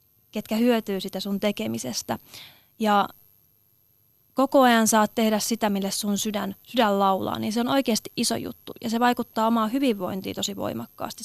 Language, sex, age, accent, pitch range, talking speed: Finnish, female, 30-49, native, 195-230 Hz, 155 wpm